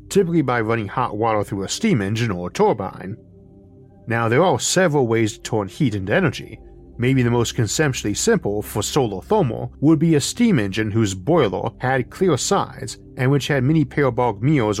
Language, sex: English, male